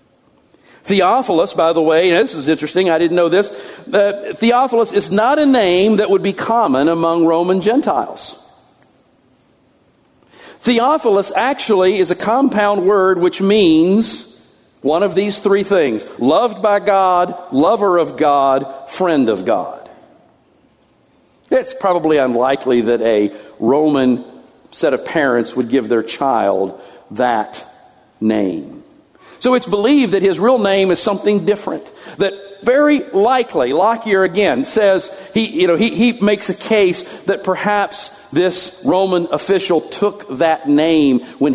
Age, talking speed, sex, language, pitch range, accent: 50-69, 135 wpm, male, English, 140-205 Hz, American